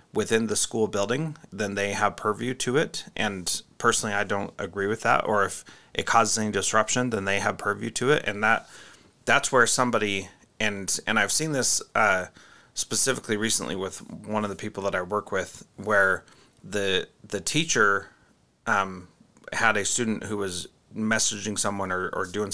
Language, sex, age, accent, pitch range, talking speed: English, male, 30-49, American, 100-115 Hz, 175 wpm